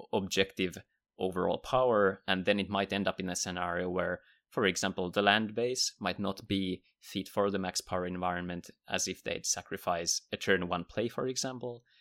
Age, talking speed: 30-49, 185 wpm